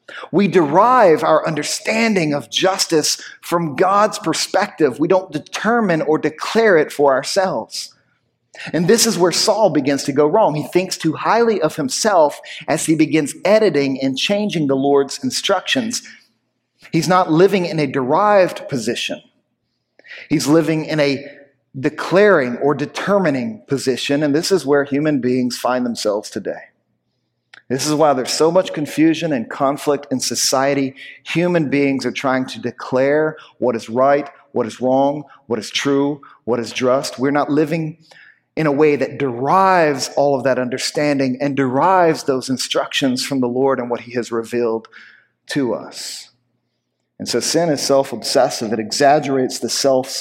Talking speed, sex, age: 155 wpm, male, 40-59